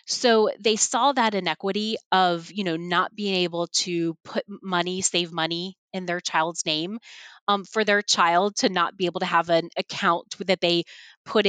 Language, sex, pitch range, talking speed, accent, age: English, female, 165-205 Hz, 185 wpm, American, 20-39